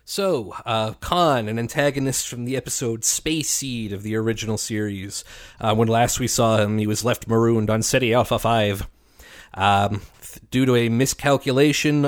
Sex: male